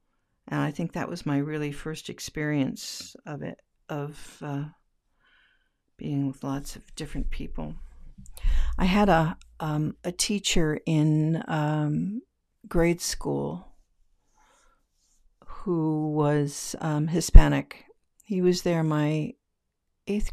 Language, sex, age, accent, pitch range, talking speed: English, female, 60-79, American, 145-180 Hz, 110 wpm